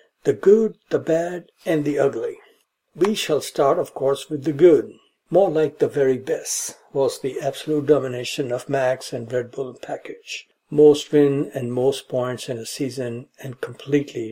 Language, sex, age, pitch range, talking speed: English, male, 60-79, 130-160 Hz, 170 wpm